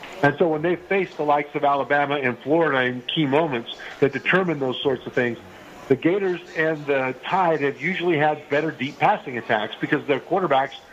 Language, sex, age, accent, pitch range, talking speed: English, male, 50-69, American, 135-160 Hz, 190 wpm